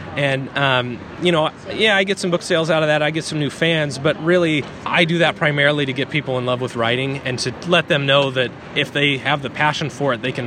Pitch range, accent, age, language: 135-155 Hz, American, 30-49, English